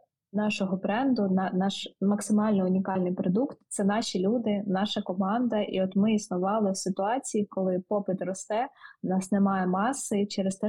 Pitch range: 190-215 Hz